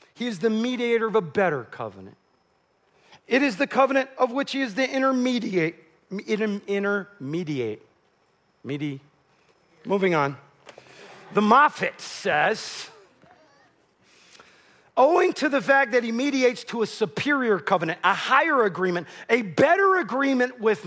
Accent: American